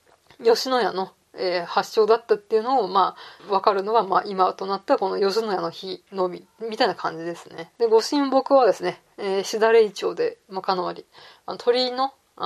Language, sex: Japanese, female